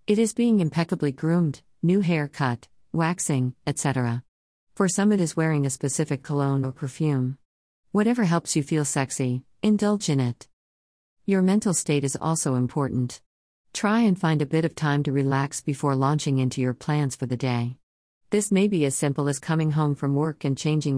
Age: 50-69